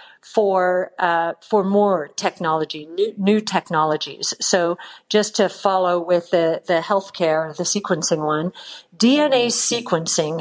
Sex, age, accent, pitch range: female, 50-69, American, 175-215 Hz